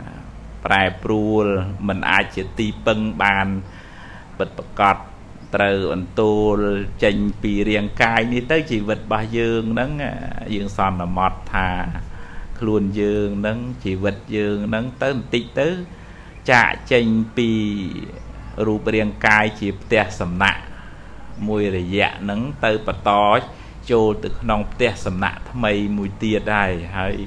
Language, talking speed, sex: English, 35 wpm, male